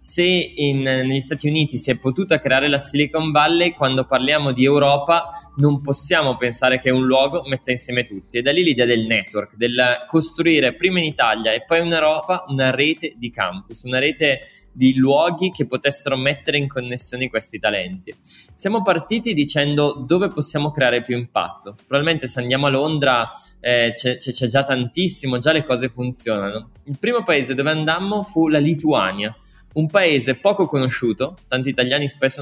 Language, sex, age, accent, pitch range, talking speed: Italian, male, 20-39, native, 125-160 Hz, 170 wpm